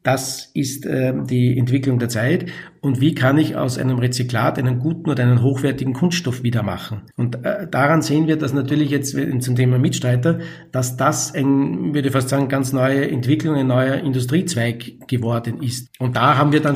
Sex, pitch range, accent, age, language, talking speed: male, 125-150 Hz, Austrian, 50-69, German, 190 wpm